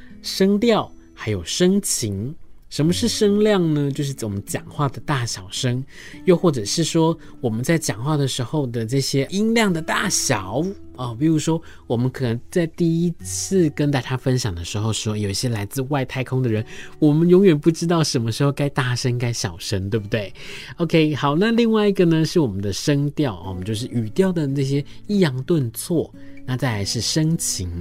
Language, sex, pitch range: Chinese, male, 115-165 Hz